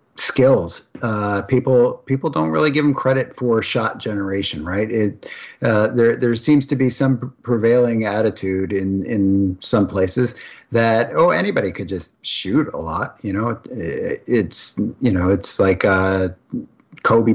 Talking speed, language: 155 wpm, English